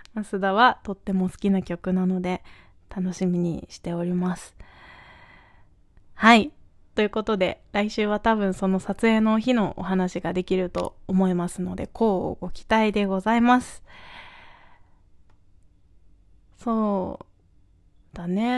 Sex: female